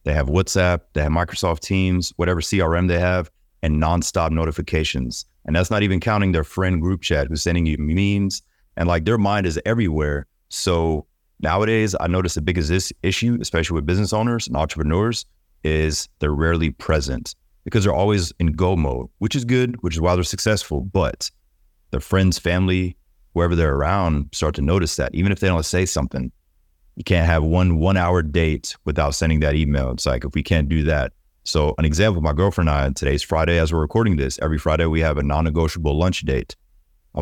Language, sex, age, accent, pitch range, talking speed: English, male, 30-49, American, 75-95 Hz, 195 wpm